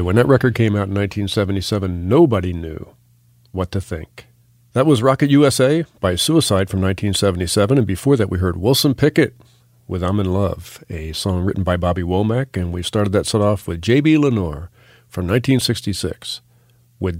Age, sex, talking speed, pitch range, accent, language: 40-59, male, 170 wpm, 95-125 Hz, American, English